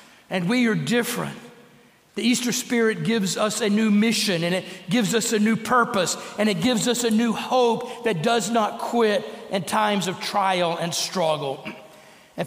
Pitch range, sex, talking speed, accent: 185-235 Hz, male, 180 wpm, American